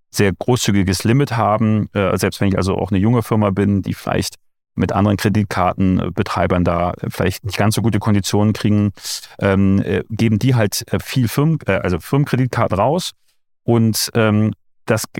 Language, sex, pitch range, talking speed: German, male, 95-115 Hz, 140 wpm